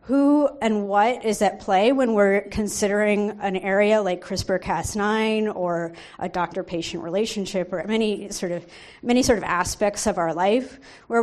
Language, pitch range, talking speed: English, 190-235 Hz, 155 wpm